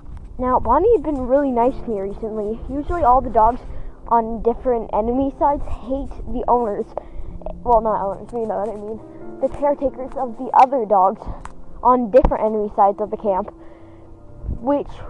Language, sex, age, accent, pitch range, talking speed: English, female, 10-29, American, 210-280 Hz, 165 wpm